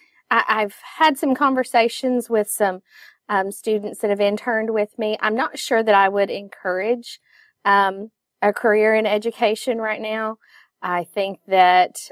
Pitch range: 180-215 Hz